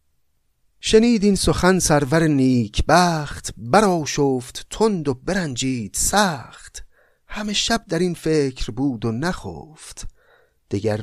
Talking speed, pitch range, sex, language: 105 wpm, 115-165 Hz, male, Persian